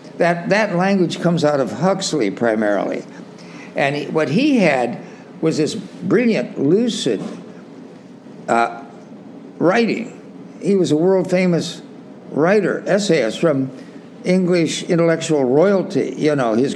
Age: 60-79